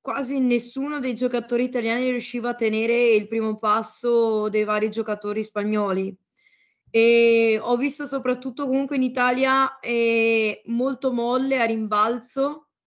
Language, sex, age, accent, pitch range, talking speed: Italian, female, 20-39, native, 220-250 Hz, 125 wpm